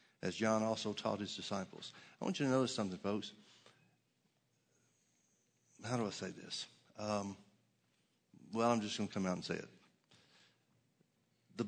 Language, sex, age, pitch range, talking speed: English, male, 50-69, 100-120 Hz, 155 wpm